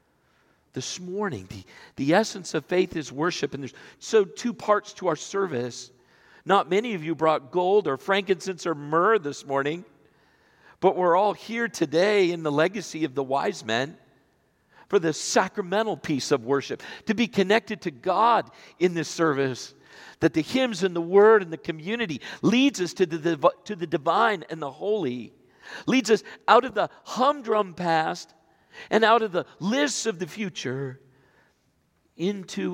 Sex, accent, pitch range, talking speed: male, American, 135-195 Hz, 165 wpm